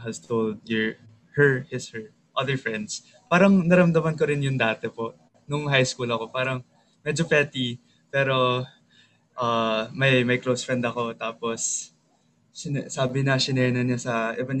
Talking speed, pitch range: 155 wpm, 115-145 Hz